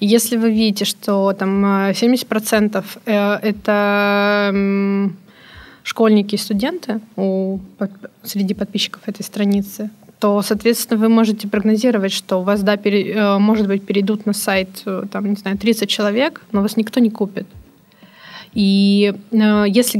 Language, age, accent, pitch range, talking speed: Russian, 20-39, native, 200-225 Hz, 110 wpm